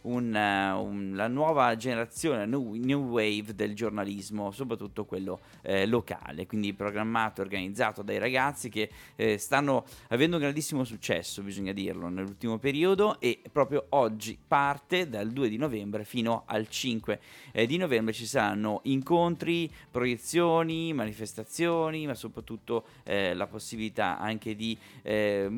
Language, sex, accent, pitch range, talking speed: Italian, male, native, 100-130 Hz, 130 wpm